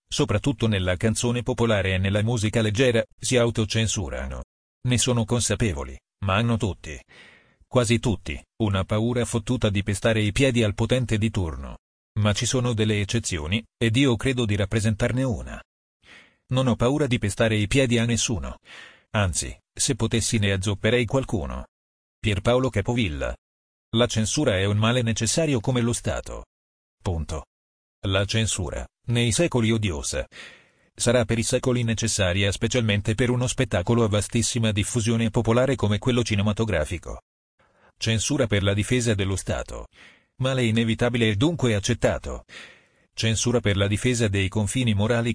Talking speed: 140 wpm